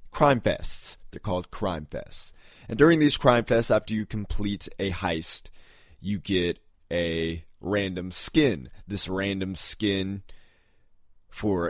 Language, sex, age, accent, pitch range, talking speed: English, male, 20-39, American, 90-110 Hz, 130 wpm